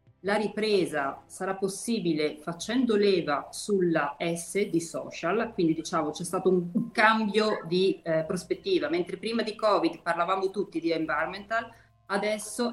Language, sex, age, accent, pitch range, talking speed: Italian, female, 30-49, native, 170-220 Hz, 130 wpm